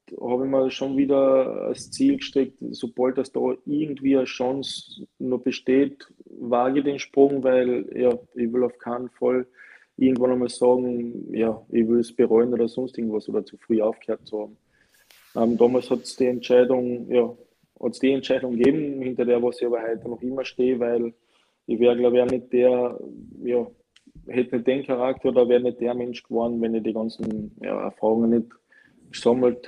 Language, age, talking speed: German, 20-39, 170 wpm